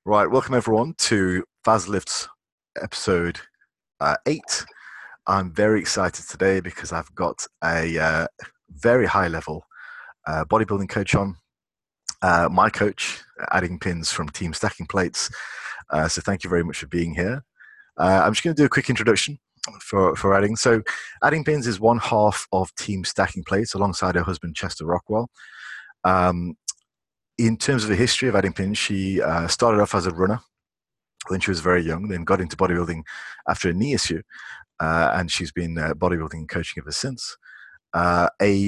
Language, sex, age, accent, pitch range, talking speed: English, male, 30-49, British, 85-110 Hz, 170 wpm